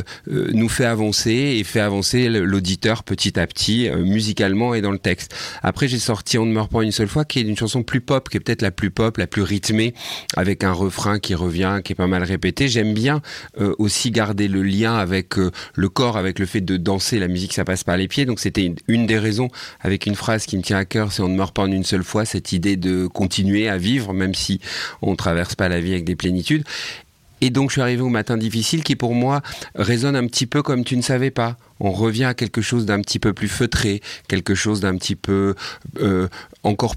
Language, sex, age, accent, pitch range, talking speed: French, male, 40-59, French, 95-120 Hz, 245 wpm